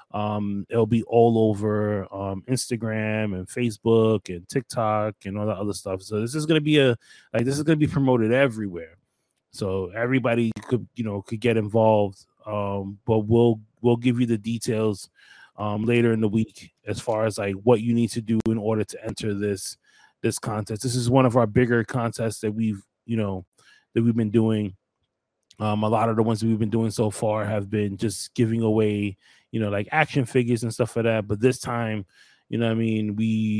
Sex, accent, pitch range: male, American, 105-120 Hz